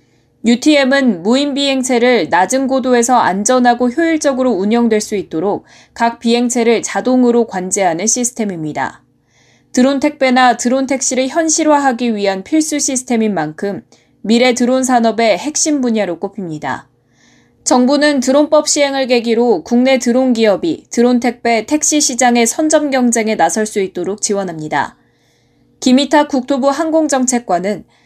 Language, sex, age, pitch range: Korean, female, 20-39, 210-265 Hz